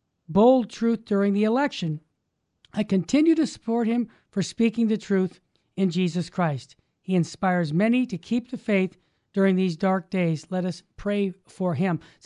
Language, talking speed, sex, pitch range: English, 165 wpm, male, 190-245 Hz